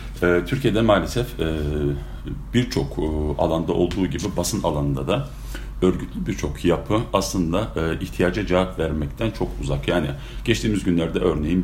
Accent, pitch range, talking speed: native, 75-100 Hz, 115 wpm